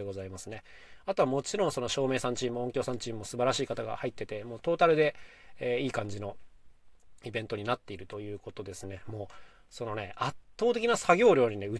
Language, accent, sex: Japanese, native, male